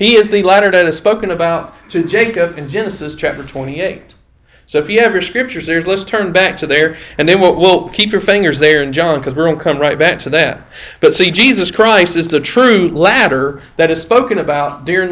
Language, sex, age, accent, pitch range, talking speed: English, male, 40-59, American, 155-210 Hz, 230 wpm